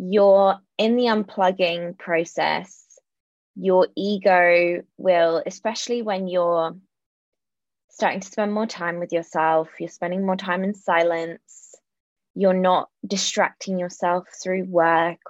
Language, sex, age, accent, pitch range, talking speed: English, female, 20-39, British, 165-195 Hz, 120 wpm